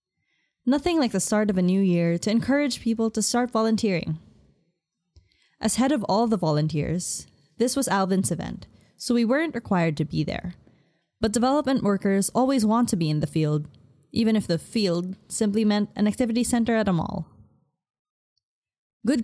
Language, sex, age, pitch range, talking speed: English, female, 10-29, 175-235 Hz, 170 wpm